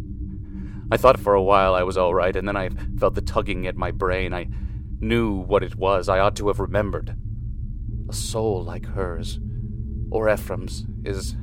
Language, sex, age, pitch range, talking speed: English, male, 30-49, 95-110 Hz, 180 wpm